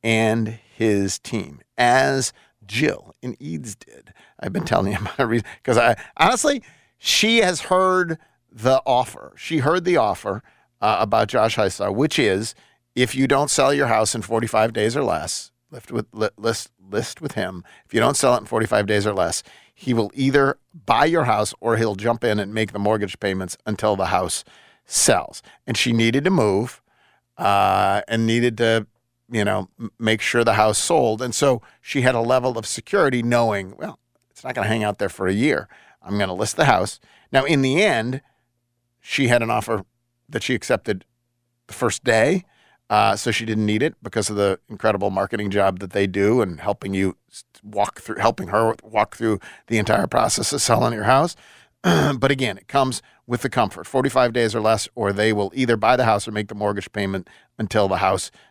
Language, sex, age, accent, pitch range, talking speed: English, male, 50-69, American, 105-125 Hz, 195 wpm